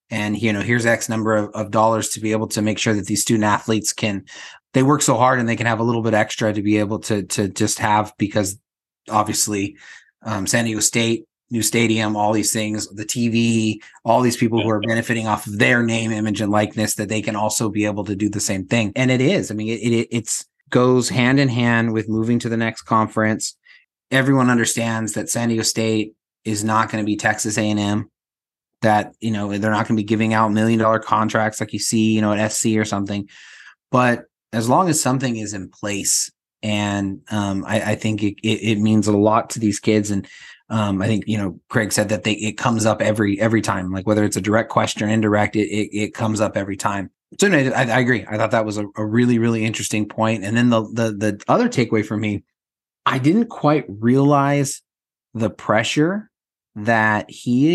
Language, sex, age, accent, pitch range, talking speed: English, male, 30-49, American, 105-115 Hz, 220 wpm